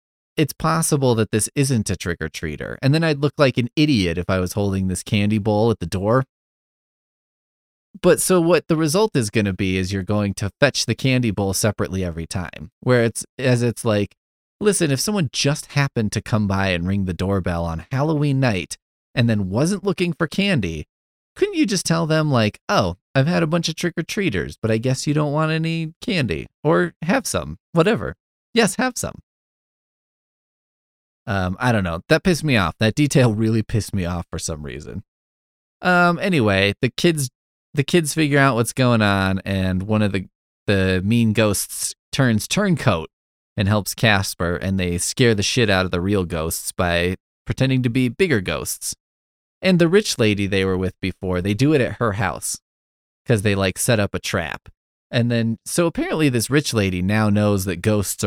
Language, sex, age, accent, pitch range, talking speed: English, male, 30-49, American, 95-145 Hz, 190 wpm